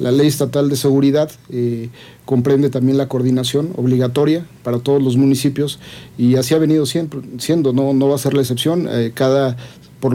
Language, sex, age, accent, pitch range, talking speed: Spanish, male, 50-69, Mexican, 125-140 Hz, 185 wpm